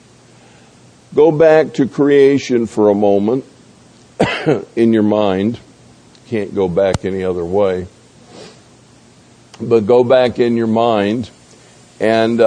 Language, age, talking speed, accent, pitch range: English, 50-69, 110 wpm, American, 100-145 Hz